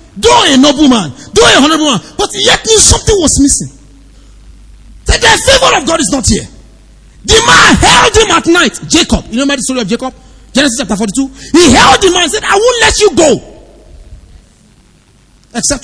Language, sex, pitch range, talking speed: English, male, 180-305 Hz, 195 wpm